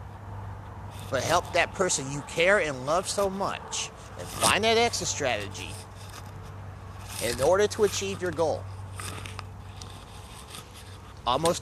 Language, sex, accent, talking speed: English, male, American, 115 wpm